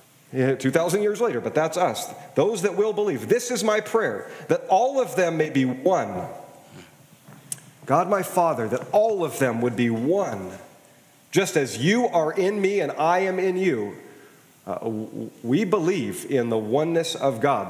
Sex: male